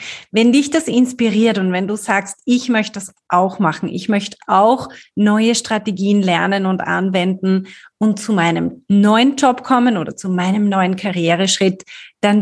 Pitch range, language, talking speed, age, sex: 190-240 Hz, German, 160 wpm, 30-49, female